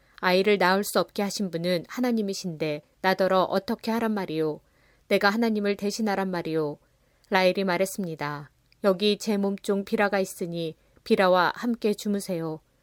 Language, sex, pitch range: Korean, female, 170-200 Hz